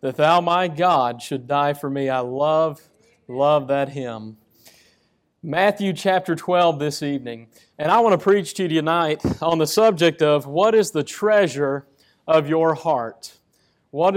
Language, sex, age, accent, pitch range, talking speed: English, male, 40-59, American, 150-190 Hz, 160 wpm